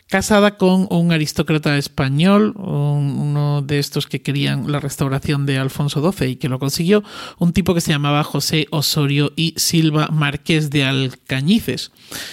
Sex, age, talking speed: male, 40-59, 150 wpm